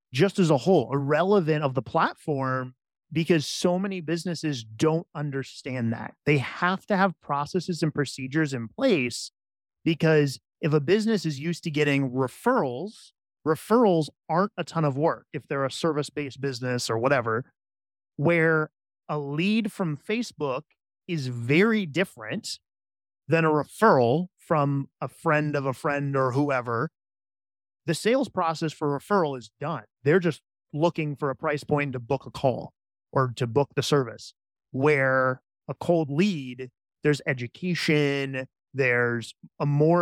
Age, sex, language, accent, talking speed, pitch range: 30-49, male, English, American, 145 wpm, 130-165 Hz